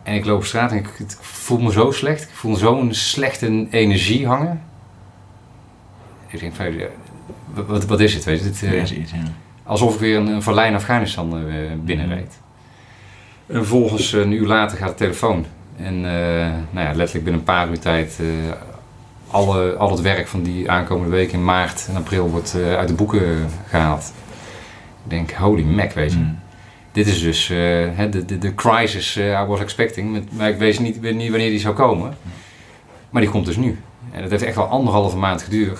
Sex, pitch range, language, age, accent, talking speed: male, 85-110 Hz, Dutch, 40-59, Dutch, 190 wpm